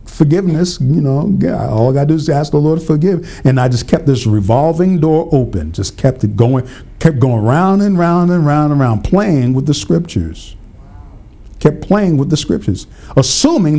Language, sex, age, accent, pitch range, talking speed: English, male, 50-69, American, 115-170 Hz, 195 wpm